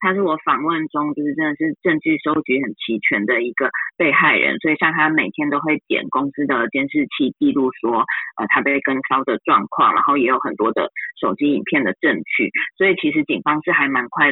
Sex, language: female, Chinese